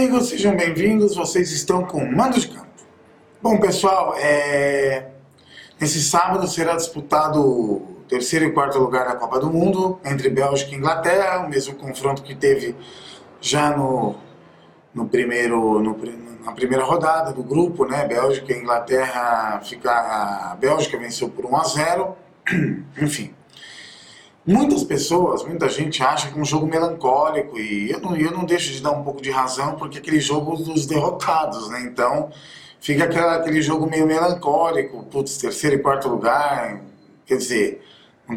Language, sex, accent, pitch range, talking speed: Portuguese, male, Brazilian, 135-170 Hz, 160 wpm